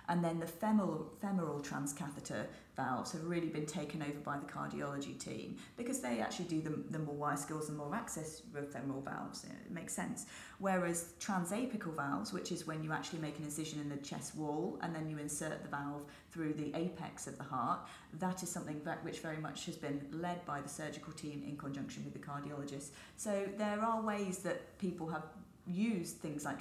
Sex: female